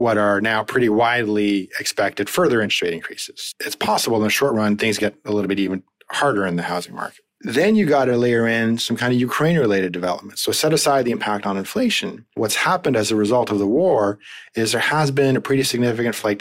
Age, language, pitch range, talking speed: 30-49, English, 100-125 Hz, 225 wpm